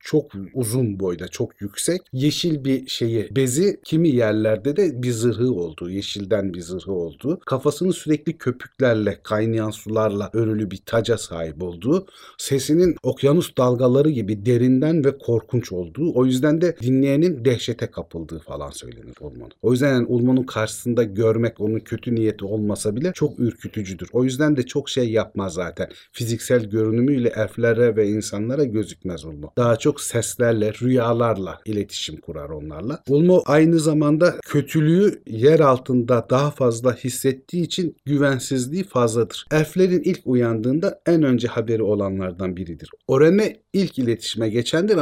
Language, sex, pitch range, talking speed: Turkish, male, 110-145 Hz, 140 wpm